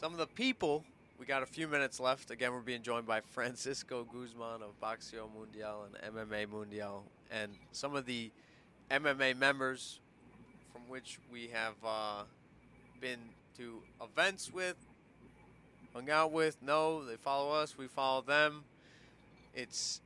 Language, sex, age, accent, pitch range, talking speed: English, male, 20-39, American, 120-155 Hz, 145 wpm